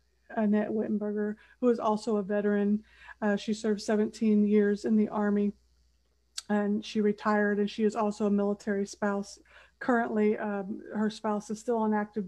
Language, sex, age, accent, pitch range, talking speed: English, female, 50-69, American, 210-220 Hz, 160 wpm